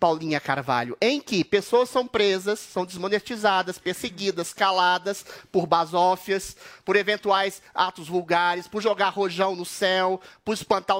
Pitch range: 200-285 Hz